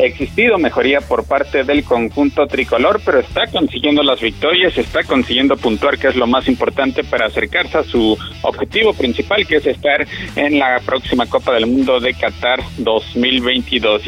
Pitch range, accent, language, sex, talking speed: 130-160 Hz, Mexican, Spanish, male, 160 wpm